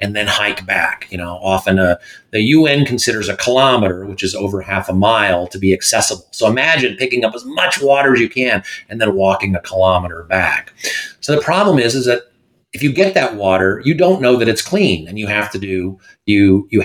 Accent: American